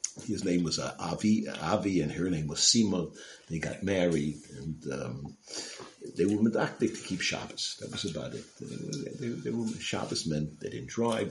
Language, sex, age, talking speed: English, male, 50-69, 180 wpm